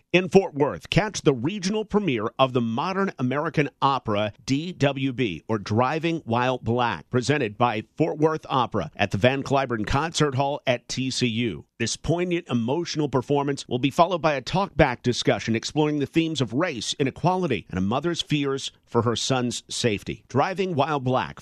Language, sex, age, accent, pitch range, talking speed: English, male, 50-69, American, 125-170 Hz, 160 wpm